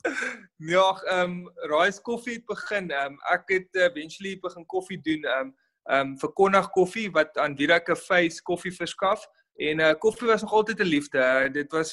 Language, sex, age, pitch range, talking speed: English, male, 20-39, 155-190 Hz, 175 wpm